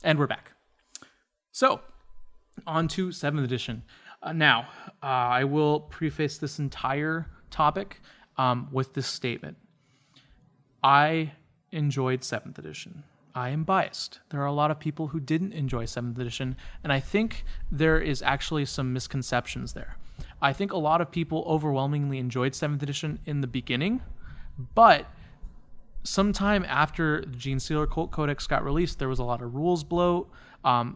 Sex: male